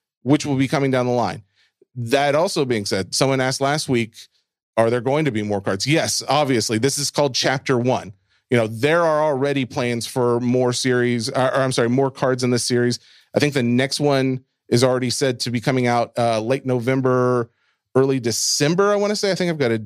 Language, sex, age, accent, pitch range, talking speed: English, male, 30-49, American, 120-145 Hz, 220 wpm